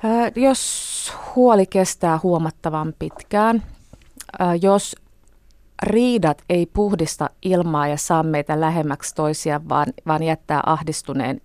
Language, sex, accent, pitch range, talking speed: Finnish, female, native, 155-175 Hz, 100 wpm